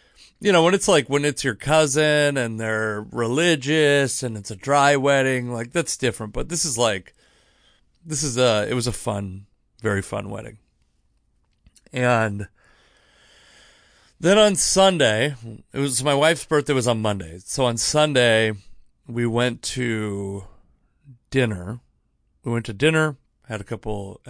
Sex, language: male, English